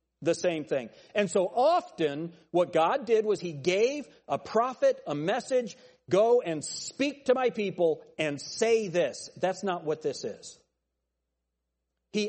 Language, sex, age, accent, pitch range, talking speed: English, male, 40-59, American, 135-190 Hz, 150 wpm